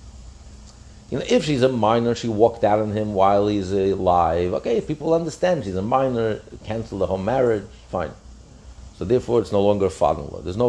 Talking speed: 185 wpm